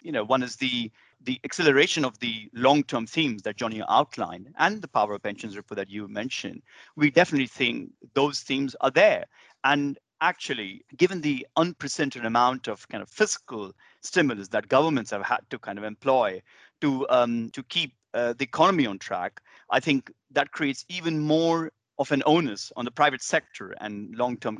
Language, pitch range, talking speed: English, 115-145 Hz, 180 wpm